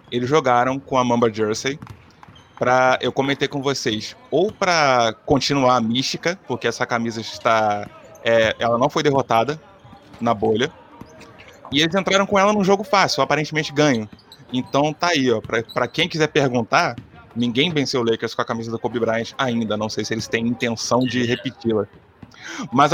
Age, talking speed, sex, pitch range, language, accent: 20-39, 170 wpm, male, 120-160 Hz, Portuguese, Brazilian